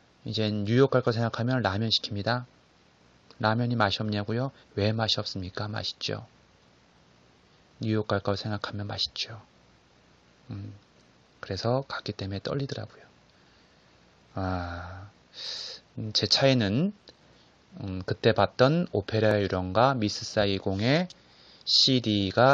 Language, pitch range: Korean, 95-115 Hz